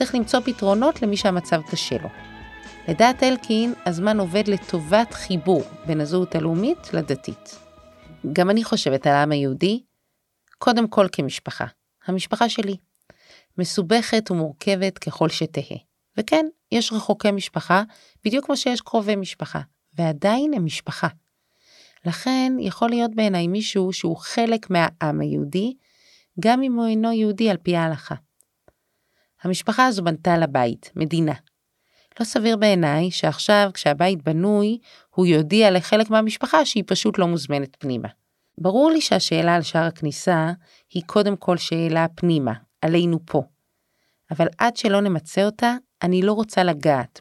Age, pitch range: 30-49, 160-220 Hz